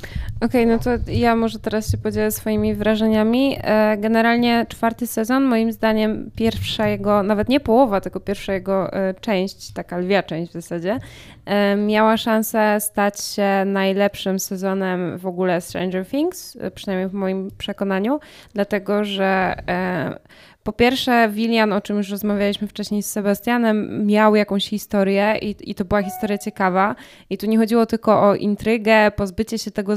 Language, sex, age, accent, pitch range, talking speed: Polish, female, 20-39, native, 195-220 Hz, 150 wpm